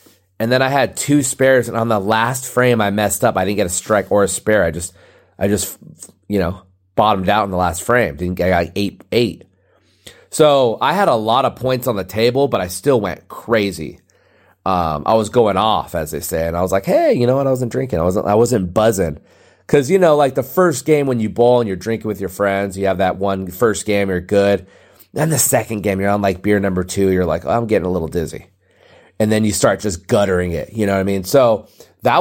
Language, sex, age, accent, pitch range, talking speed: English, male, 30-49, American, 95-130 Hz, 250 wpm